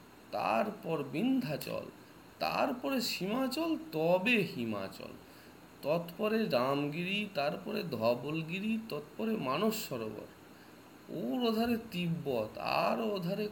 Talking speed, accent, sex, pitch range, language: 70 wpm, native, male, 140-220 Hz, Bengali